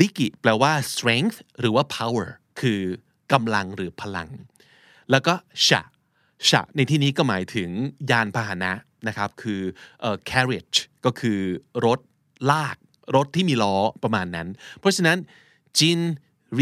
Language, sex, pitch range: Thai, male, 105-145 Hz